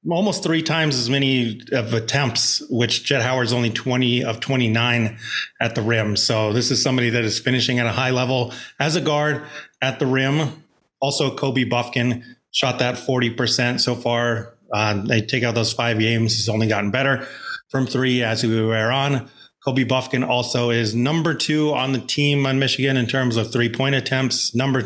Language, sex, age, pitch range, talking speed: English, male, 30-49, 115-130 Hz, 185 wpm